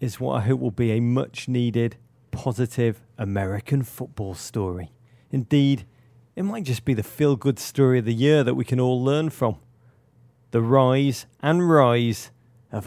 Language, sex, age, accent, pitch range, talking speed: English, male, 40-59, British, 120-160 Hz, 160 wpm